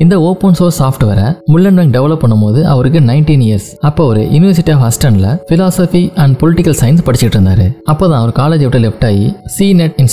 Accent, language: native, Tamil